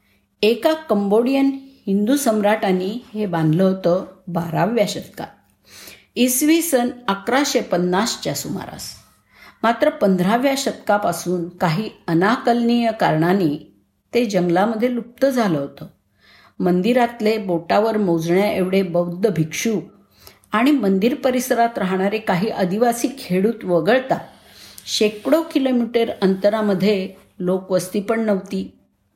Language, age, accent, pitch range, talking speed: Marathi, 50-69, native, 175-235 Hz, 95 wpm